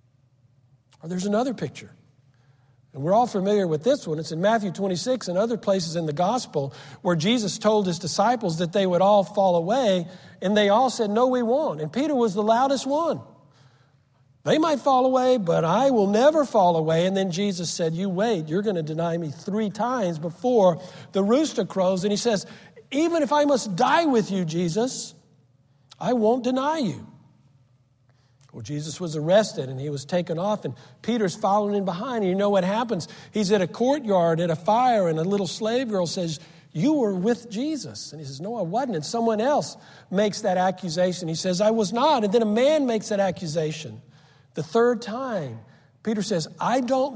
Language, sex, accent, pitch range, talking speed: English, male, American, 150-225 Hz, 195 wpm